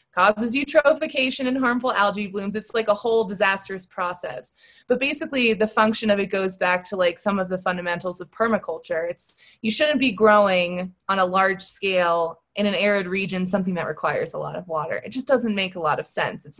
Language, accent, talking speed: English, American, 205 wpm